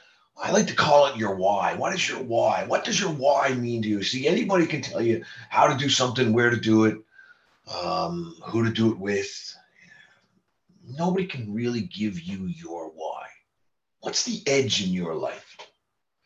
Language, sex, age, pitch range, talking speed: English, male, 40-59, 115-145 Hz, 185 wpm